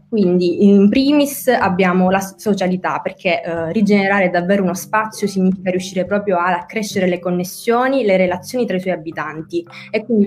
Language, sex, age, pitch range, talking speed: Italian, female, 20-39, 175-200 Hz, 160 wpm